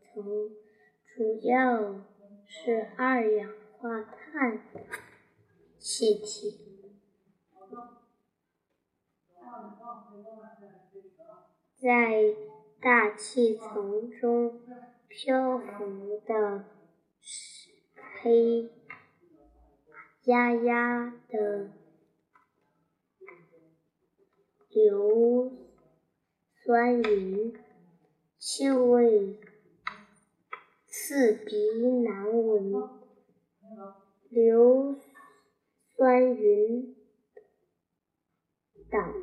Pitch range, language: 210-245 Hz, Chinese